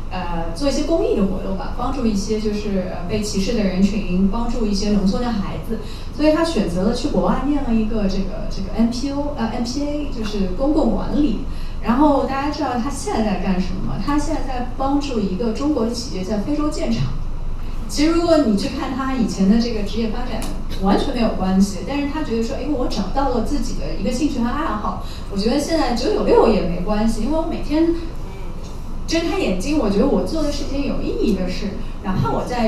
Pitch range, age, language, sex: 205-280 Hz, 30-49, Chinese, female